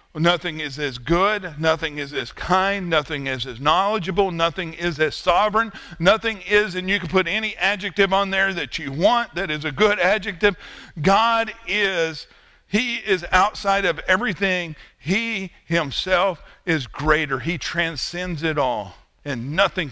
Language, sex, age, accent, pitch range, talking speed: English, male, 50-69, American, 160-210 Hz, 155 wpm